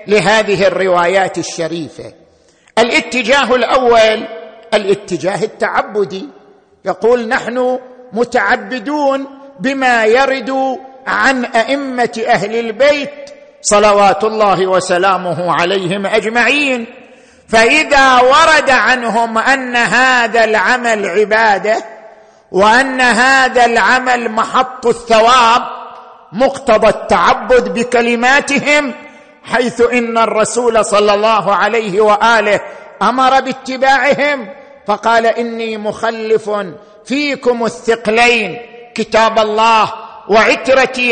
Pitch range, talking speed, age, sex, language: 215-255 Hz, 75 wpm, 50-69, male, Arabic